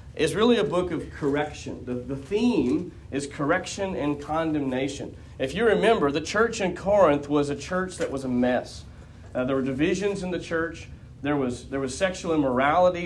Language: English